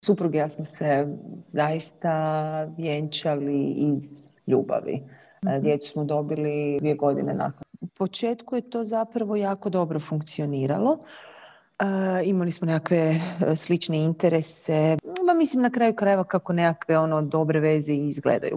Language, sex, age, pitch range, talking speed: Croatian, female, 40-59, 155-195 Hz, 125 wpm